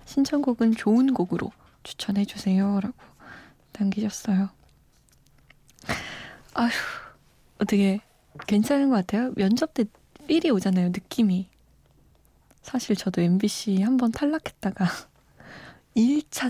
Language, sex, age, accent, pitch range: Korean, female, 20-39, native, 190-250 Hz